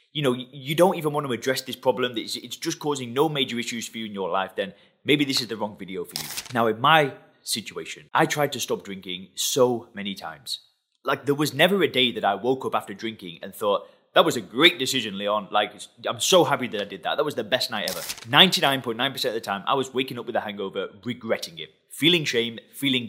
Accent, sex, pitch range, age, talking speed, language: British, male, 115-150 Hz, 20-39, 240 wpm, English